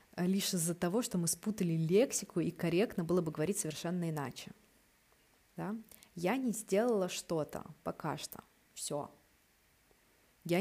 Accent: native